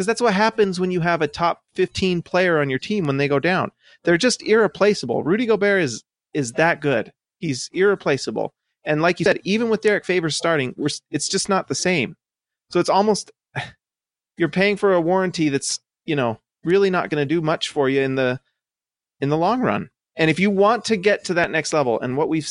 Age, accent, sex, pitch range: 30-49, American, male, 150-195 Hz